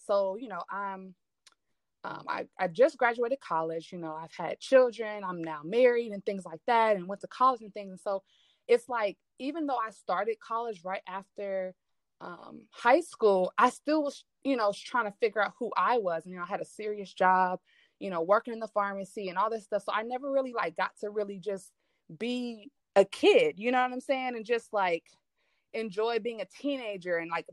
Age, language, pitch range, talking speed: 20-39, English, 190-245 Hz, 215 wpm